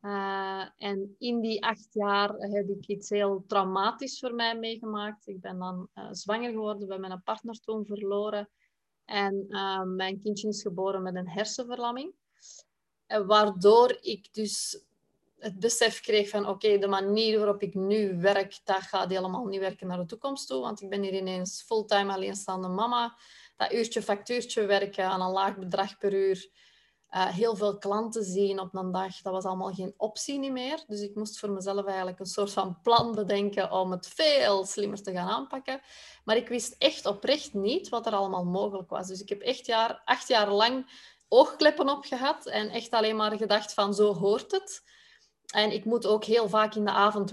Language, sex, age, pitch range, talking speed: Dutch, female, 30-49, 195-225 Hz, 185 wpm